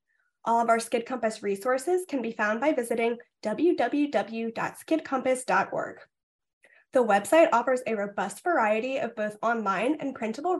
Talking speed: 130 wpm